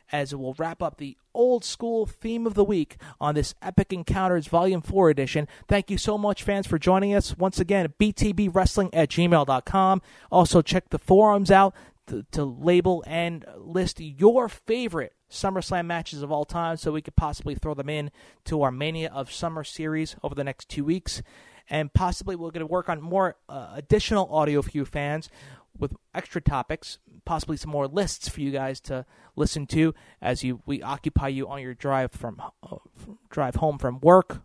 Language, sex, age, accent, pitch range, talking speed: English, male, 30-49, American, 140-175 Hz, 185 wpm